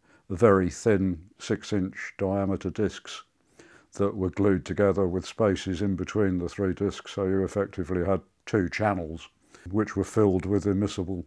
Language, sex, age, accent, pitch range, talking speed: English, male, 50-69, British, 95-100 Hz, 150 wpm